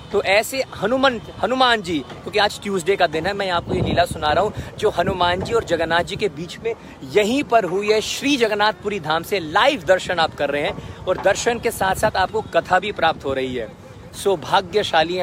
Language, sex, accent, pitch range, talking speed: Hindi, male, native, 145-200 Hz, 215 wpm